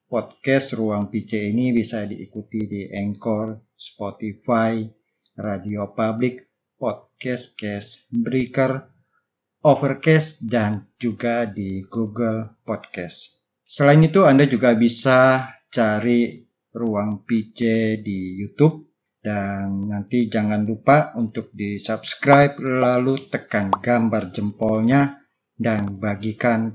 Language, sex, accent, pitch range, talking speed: Indonesian, male, native, 105-125 Hz, 95 wpm